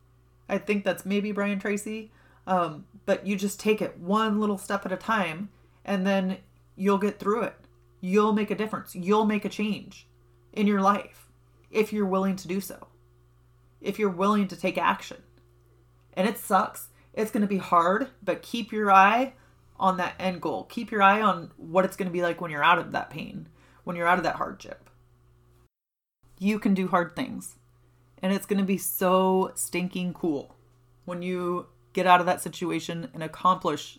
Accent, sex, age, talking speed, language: American, female, 30-49, 190 wpm, English